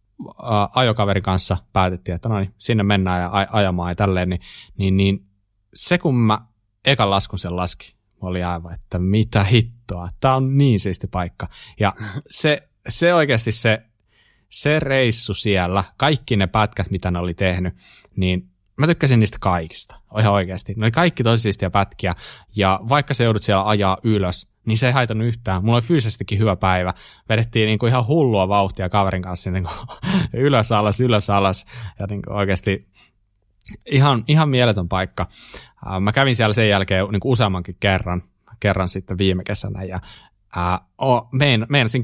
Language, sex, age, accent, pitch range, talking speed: Finnish, male, 20-39, native, 95-120 Hz, 155 wpm